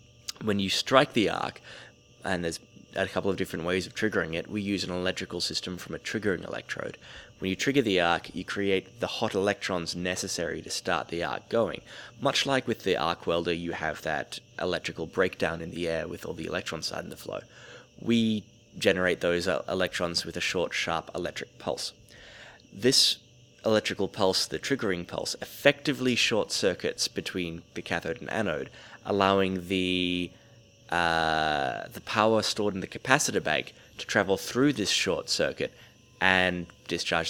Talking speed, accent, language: 165 wpm, Australian, English